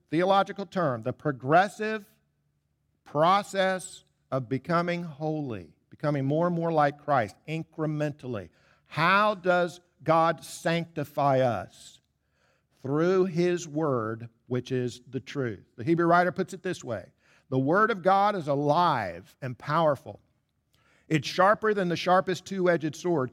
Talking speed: 125 wpm